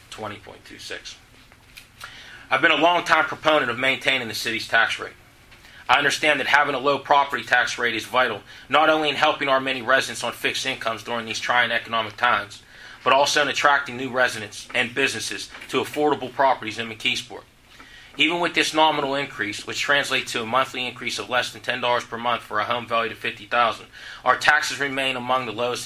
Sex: male